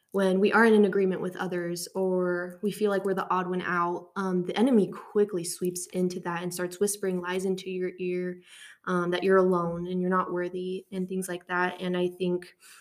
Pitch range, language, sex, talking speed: 180-195 Hz, English, female, 215 wpm